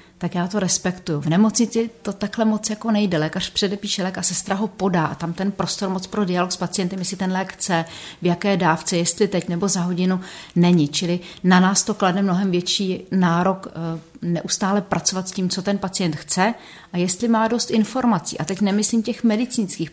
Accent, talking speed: native, 195 wpm